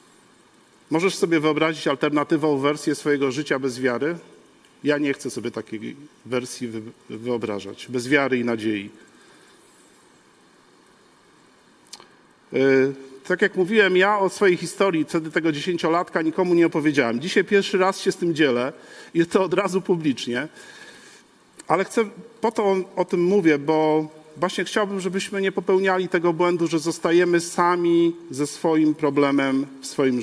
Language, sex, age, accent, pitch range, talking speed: Polish, male, 50-69, native, 140-185 Hz, 135 wpm